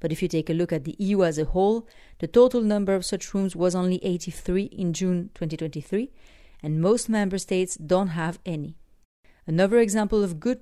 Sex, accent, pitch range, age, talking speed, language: female, French, 170-215 Hz, 40-59, 200 wpm, English